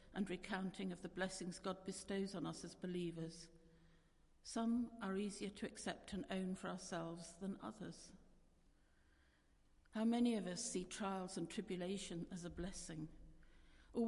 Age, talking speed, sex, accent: 60-79, 145 wpm, female, British